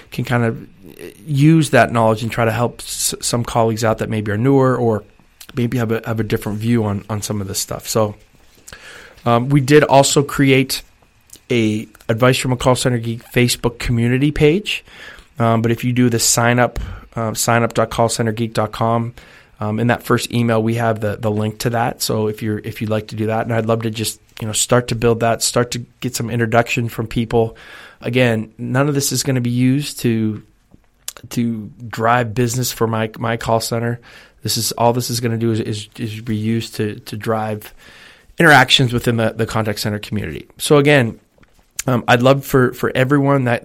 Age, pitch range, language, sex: 20-39, 110-125 Hz, English, male